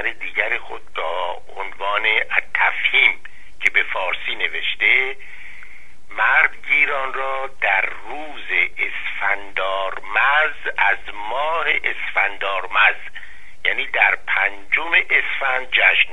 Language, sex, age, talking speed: Persian, male, 50-69, 80 wpm